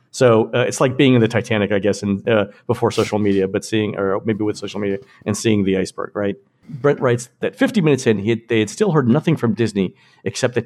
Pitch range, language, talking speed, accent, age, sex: 105-125 Hz, English, 250 wpm, American, 50-69, male